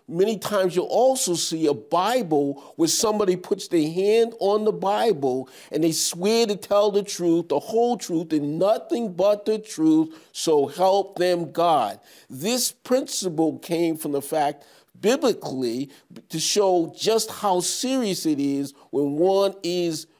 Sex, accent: male, American